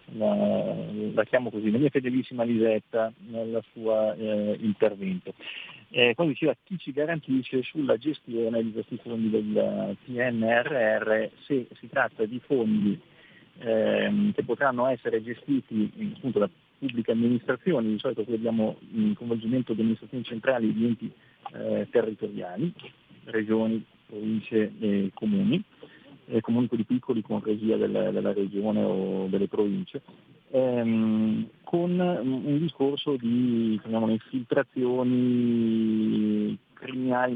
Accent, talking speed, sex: native, 125 wpm, male